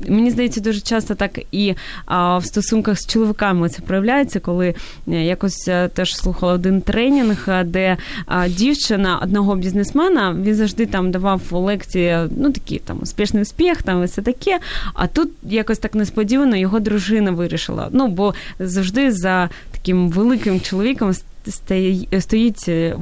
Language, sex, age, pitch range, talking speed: Ukrainian, female, 20-39, 185-235 Hz, 135 wpm